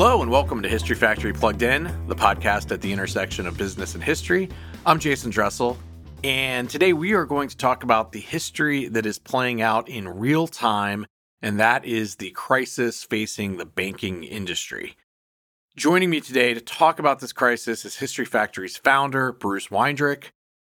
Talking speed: 175 wpm